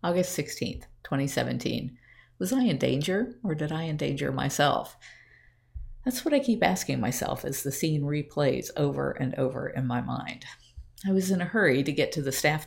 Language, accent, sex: English, American, female